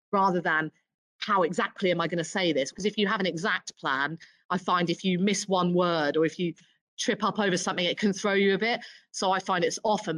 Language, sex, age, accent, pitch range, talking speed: English, female, 30-49, British, 165-205 Hz, 250 wpm